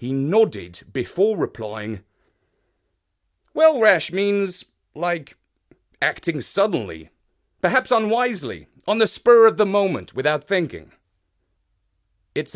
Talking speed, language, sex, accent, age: 100 wpm, English, male, British, 40-59